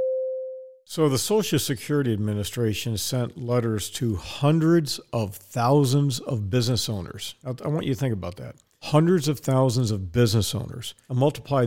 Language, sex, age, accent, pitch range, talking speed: English, male, 50-69, American, 115-150 Hz, 150 wpm